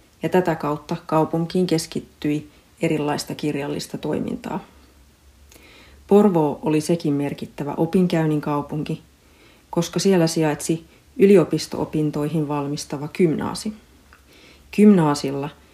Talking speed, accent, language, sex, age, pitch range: 80 wpm, native, Finnish, female, 40-59, 145-165 Hz